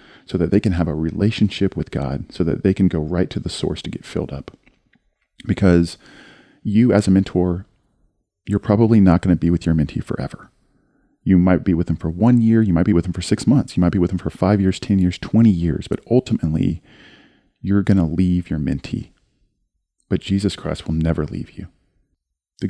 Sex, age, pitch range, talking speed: male, 40-59, 80-95 Hz, 215 wpm